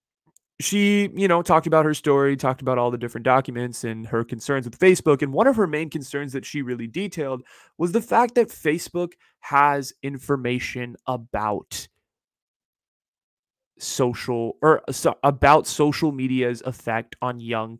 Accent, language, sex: American, English, male